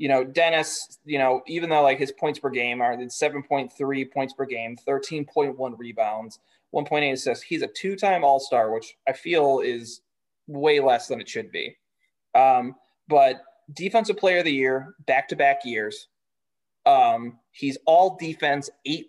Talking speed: 155 wpm